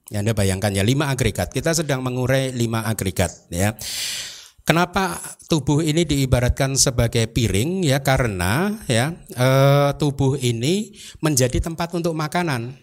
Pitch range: 115-150 Hz